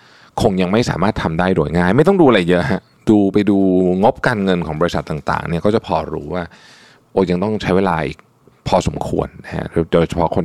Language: Thai